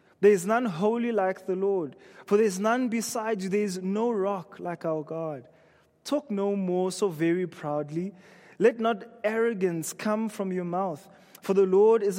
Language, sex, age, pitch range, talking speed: English, male, 20-39, 175-215 Hz, 180 wpm